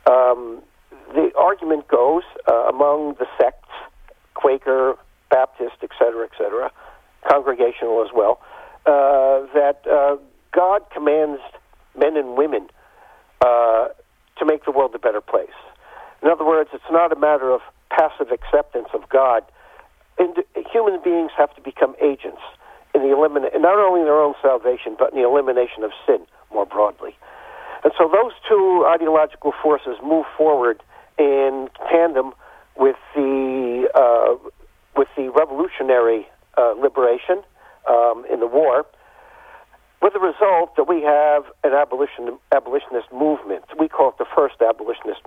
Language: English